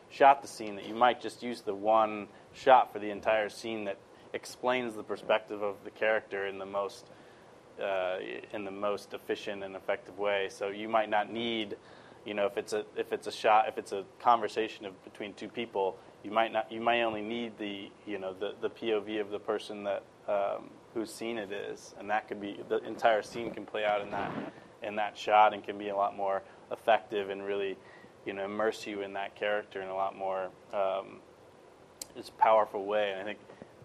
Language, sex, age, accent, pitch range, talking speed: English, male, 20-39, American, 100-110 Hz, 215 wpm